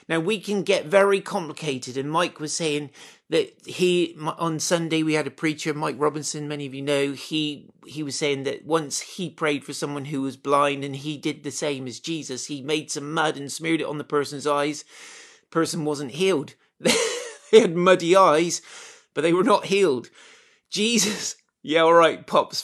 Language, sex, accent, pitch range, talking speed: English, male, British, 150-185 Hz, 190 wpm